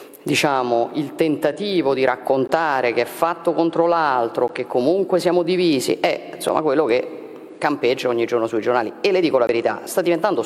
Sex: female